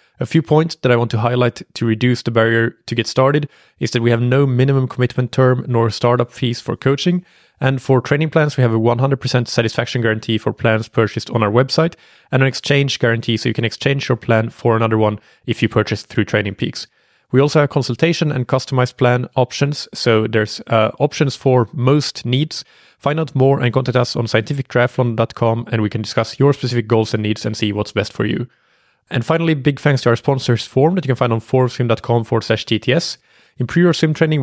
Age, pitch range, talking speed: 30-49, 115-145 Hz, 215 wpm